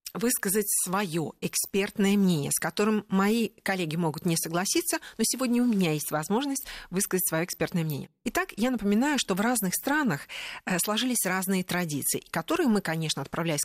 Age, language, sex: 40-59, Russian, female